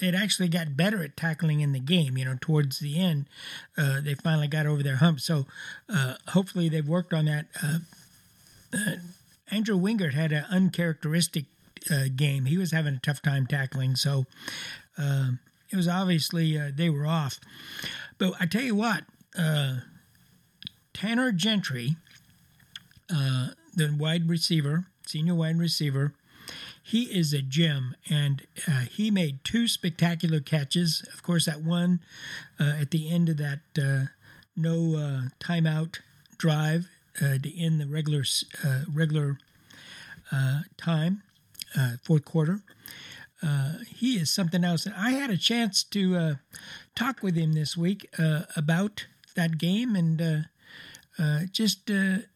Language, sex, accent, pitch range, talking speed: English, male, American, 150-180 Hz, 150 wpm